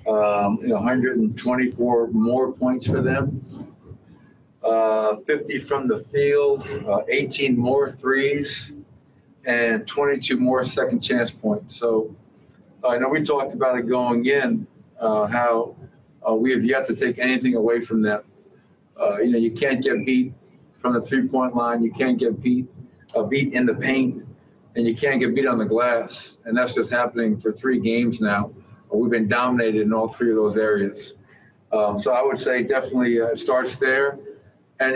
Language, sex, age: English, male, 50-69